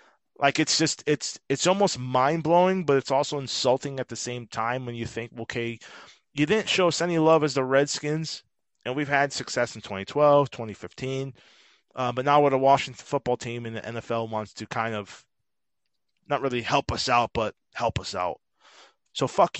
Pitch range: 115-145 Hz